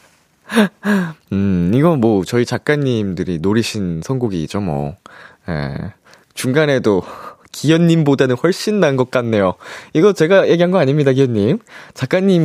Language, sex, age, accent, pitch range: Korean, male, 20-39, native, 110-175 Hz